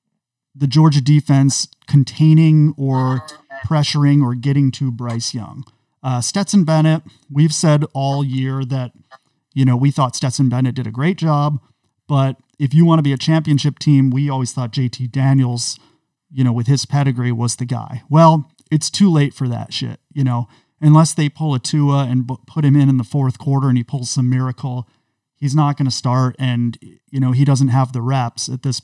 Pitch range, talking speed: 125-150 Hz, 195 wpm